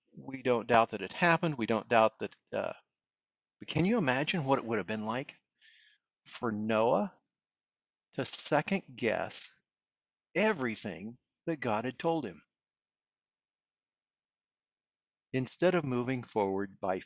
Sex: male